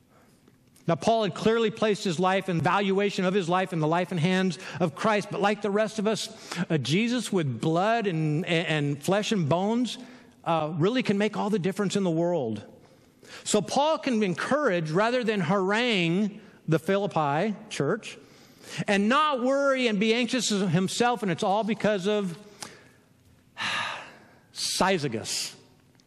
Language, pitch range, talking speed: English, 160-210 Hz, 155 wpm